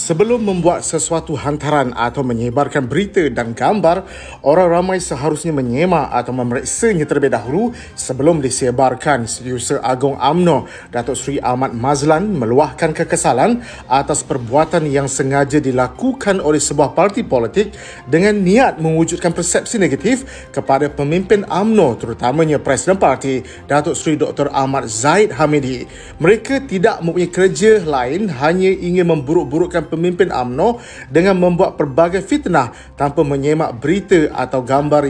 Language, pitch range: Malay, 140-190 Hz